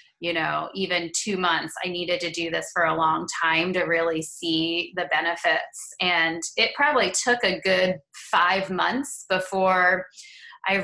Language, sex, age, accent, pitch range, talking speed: English, female, 20-39, American, 170-195 Hz, 160 wpm